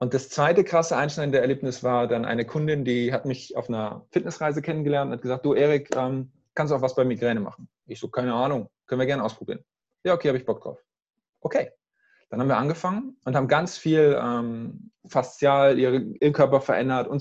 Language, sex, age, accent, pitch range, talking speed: German, male, 20-39, German, 125-180 Hz, 200 wpm